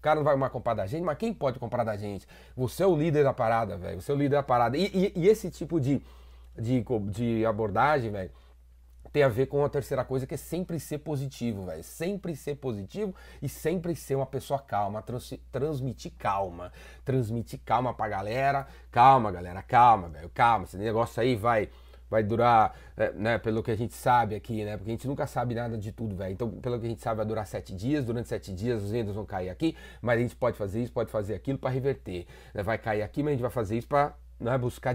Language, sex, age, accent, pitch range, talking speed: Portuguese, male, 30-49, Brazilian, 110-150 Hz, 230 wpm